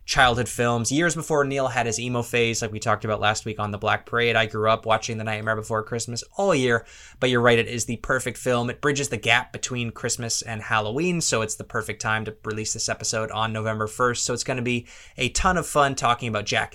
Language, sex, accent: English, male, American